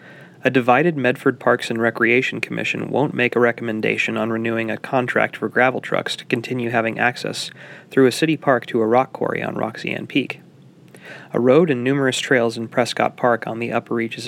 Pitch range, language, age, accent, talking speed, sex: 115-130 Hz, English, 30-49, American, 190 wpm, male